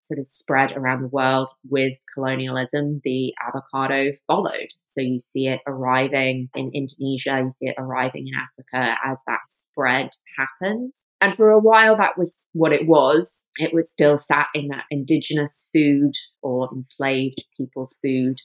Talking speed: 160 wpm